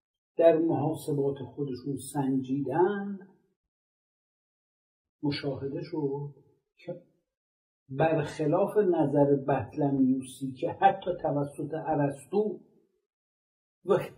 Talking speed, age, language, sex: 65 wpm, 60-79, Persian, male